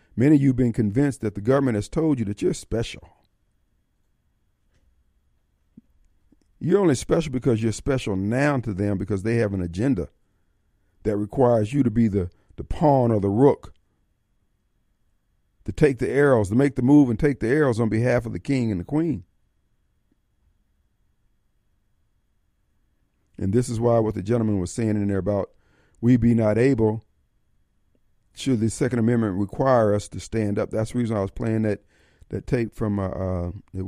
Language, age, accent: Japanese, 50-69, American